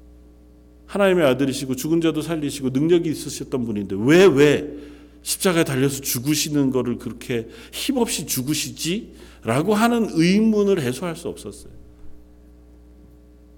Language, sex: Korean, male